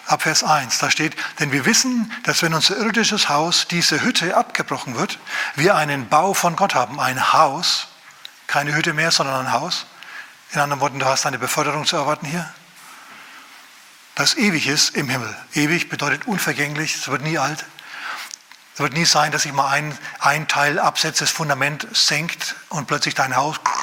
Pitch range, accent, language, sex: 140-170 Hz, German, German, male